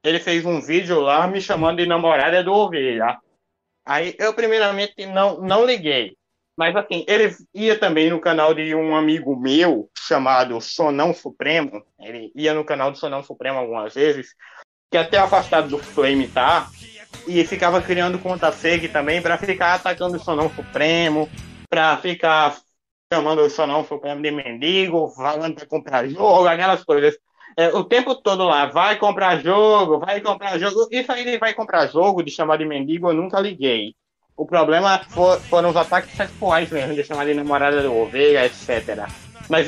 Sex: male